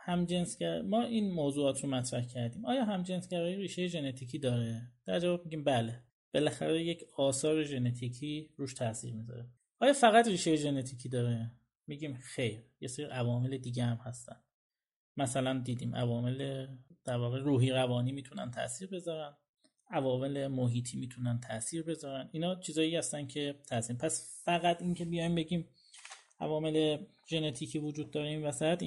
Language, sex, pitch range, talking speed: Persian, male, 125-170 Hz, 135 wpm